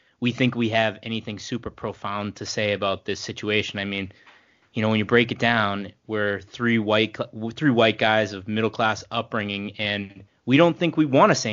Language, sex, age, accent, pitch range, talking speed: English, male, 20-39, American, 105-125 Hz, 205 wpm